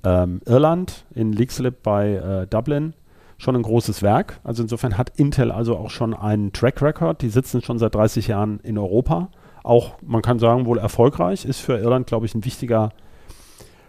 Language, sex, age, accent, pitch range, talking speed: German, male, 40-59, German, 110-140 Hz, 180 wpm